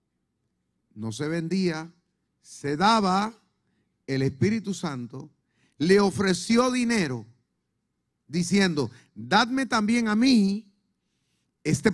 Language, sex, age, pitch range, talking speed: Spanish, male, 40-59, 140-210 Hz, 85 wpm